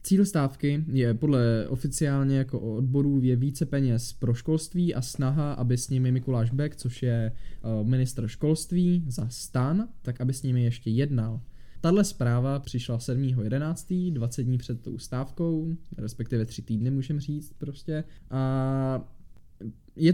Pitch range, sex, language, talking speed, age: 125-155 Hz, male, Czech, 145 wpm, 20-39